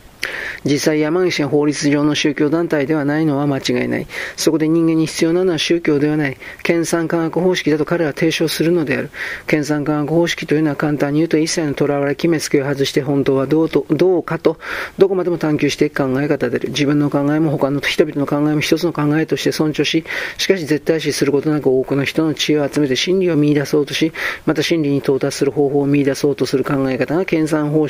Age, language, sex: 40-59, Japanese, male